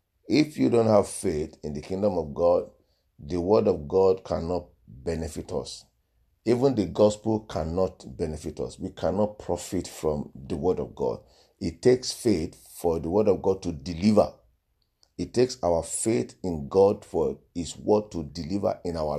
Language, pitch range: English, 85-110 Hz